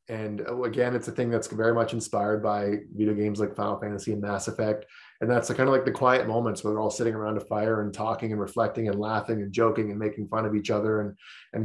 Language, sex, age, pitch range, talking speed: English, male, 20-39, 105-120 Hz, 260 wpm